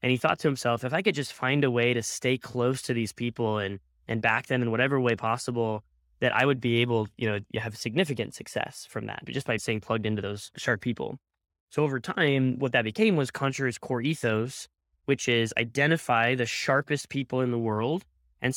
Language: English